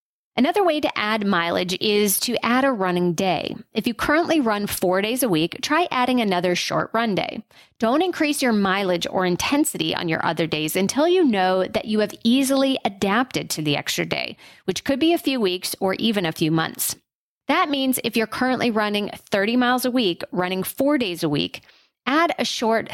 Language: English